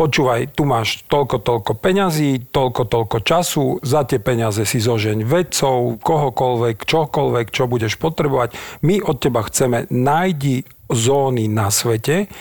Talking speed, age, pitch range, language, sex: 135 wpm, 40-59, 120-150 Hz, Slovak, male